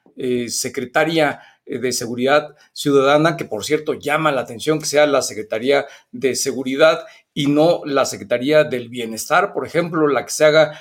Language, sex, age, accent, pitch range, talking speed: Spanish, male, 50-69, Mexican, 140-180 Hz, 160 wpm